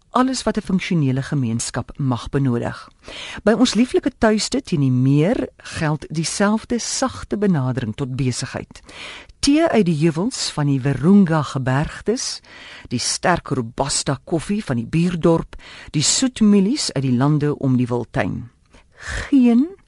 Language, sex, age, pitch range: Dutch, female, 50-69, 135-215 Hz